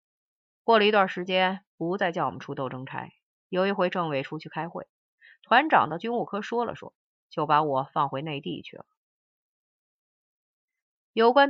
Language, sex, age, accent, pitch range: Chinese, female, 30-49, native, 160-220 Hz